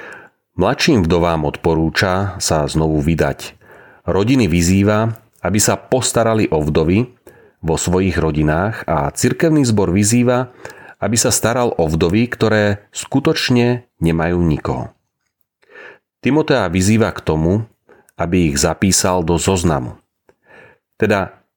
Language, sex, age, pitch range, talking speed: Slovak, male, 40-59, 85-110 Hz, 110 wpm